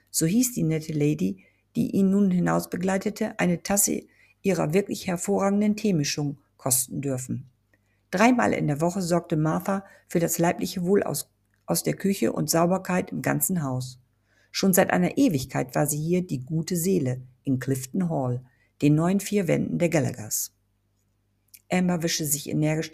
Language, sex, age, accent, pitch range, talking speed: German, female, 50-69, German, 130-185 Hz, 155 wpm